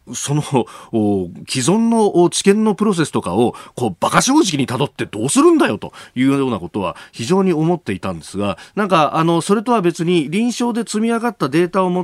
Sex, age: male, 40-59